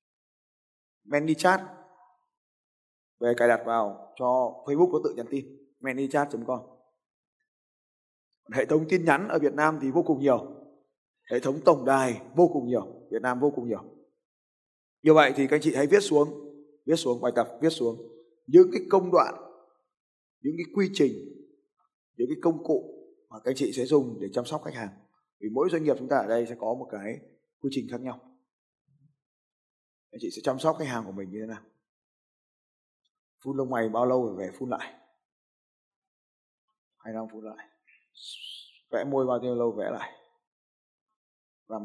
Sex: male